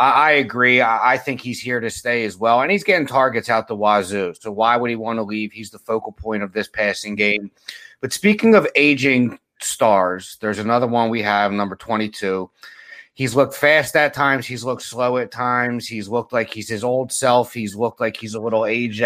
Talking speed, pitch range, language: 215 wpm, 110-135 Hz, English